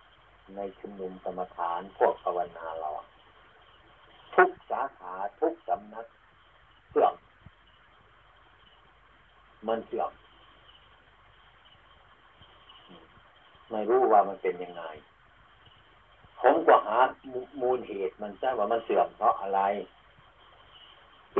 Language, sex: Thai, male